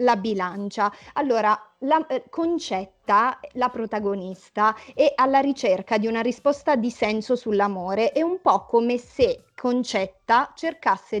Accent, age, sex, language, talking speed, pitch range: native, 30-49, female, Italian, 130 wpm, 215-285 Hz